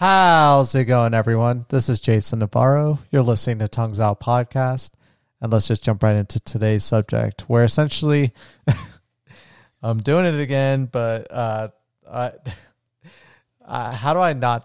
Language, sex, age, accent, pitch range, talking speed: English, male, 30-49, American, 115-130 Hz, 150 wpm